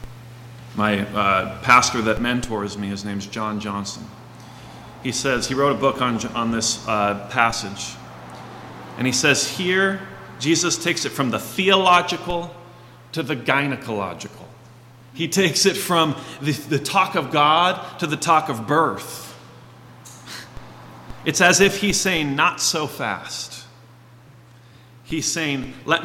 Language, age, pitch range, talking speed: English, 30-49, 120-150 Hz, 135 wpm